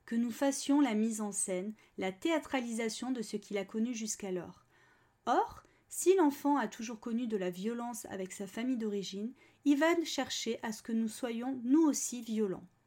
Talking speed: 180 wpm